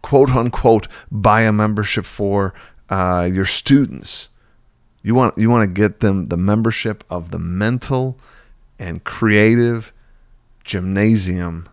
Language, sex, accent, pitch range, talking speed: English, male, American, 90-110 Hz, 125 wpm